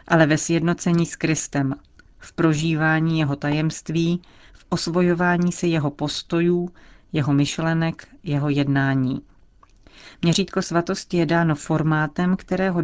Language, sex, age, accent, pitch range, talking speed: Czech, female, 40-59, native, 150-170 Hz, 110 wpm